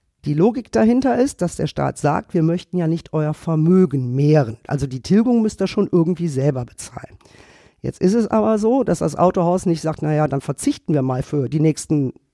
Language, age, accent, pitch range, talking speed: German, 50-69, German, 155-200 Hz, 205 wpm